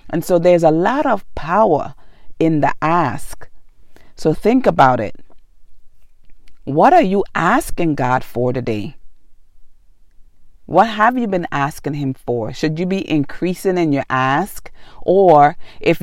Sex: female